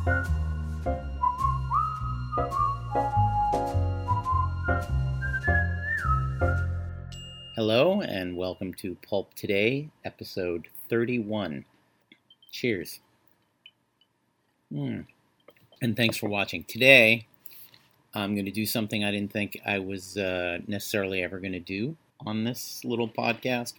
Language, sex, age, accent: English, male, 40-59, American